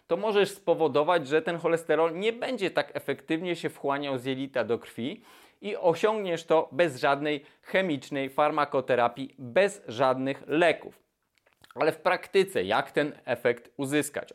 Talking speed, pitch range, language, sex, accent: 140 wpm, 135-170 Hz, Polish, male, native